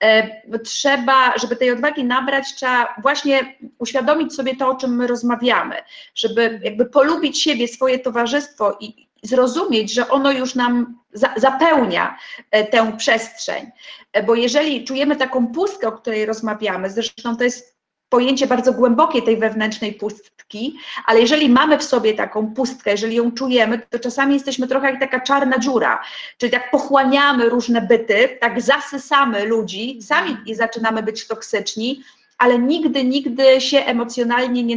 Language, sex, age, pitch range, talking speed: Polish, female, 30-49, 230-270 Hz, 140 wpm